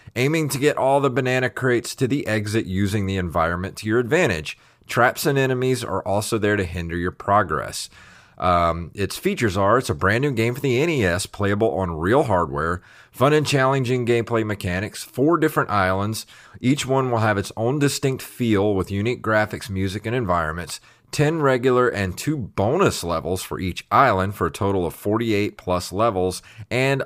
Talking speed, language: 180 wpm, English